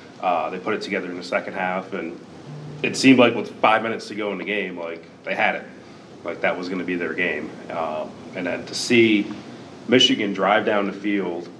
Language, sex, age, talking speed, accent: English, male, 30-49, 220 wpm, American